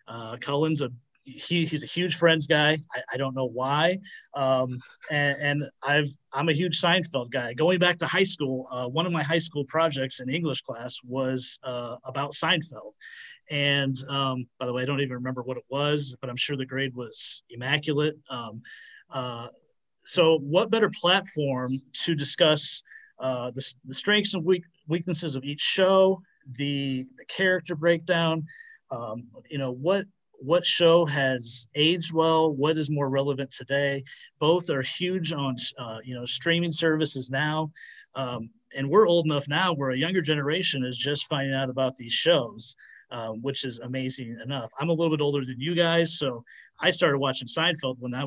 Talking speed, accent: 180 wpm, American